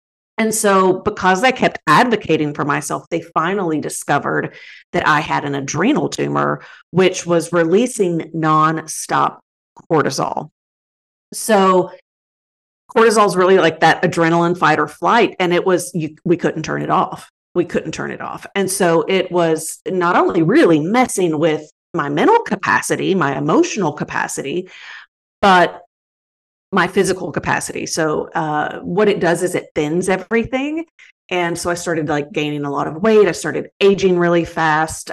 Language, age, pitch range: English, 40-59, 160-195 Hz